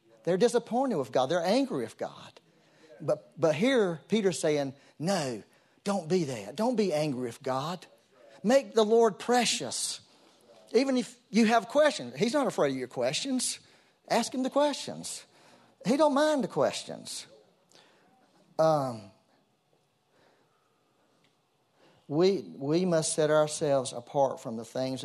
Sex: male